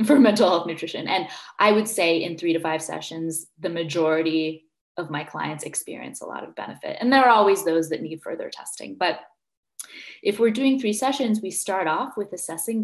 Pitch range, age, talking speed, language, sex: 165-225 Hz, 20-39, 200 wpm, English, female